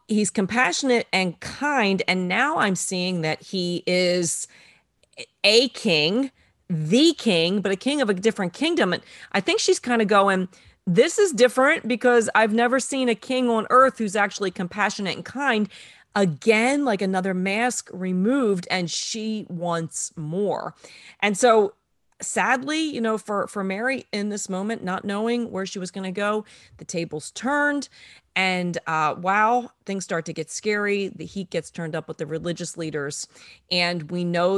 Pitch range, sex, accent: 165-215 Hz, female, American